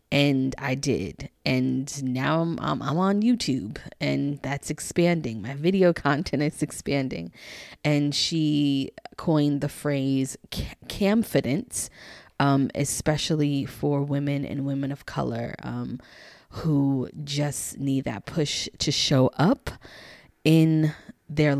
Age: 20-39